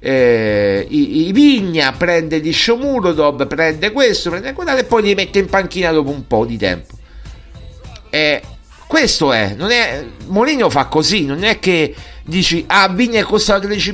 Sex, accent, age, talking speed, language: male, native, 50-69, 170 wpm, Italian